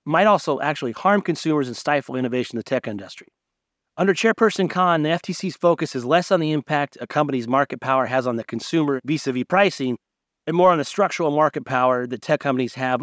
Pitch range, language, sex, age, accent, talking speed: 130-165 Hz, English, male, 30-49, American, 205 wpm